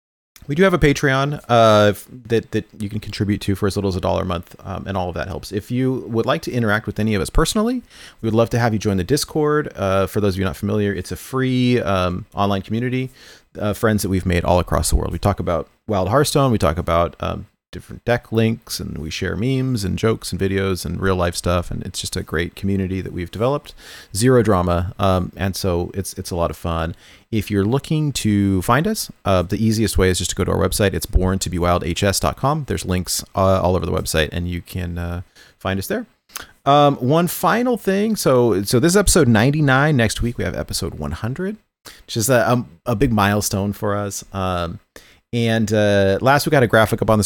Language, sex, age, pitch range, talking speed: English, male, 30-49, 90-120 Hz, 230 wpm